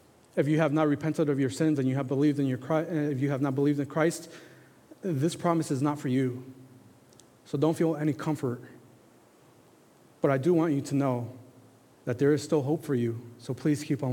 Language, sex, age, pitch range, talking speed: English, male, 30-49, 135-165 Hz, 210 wpm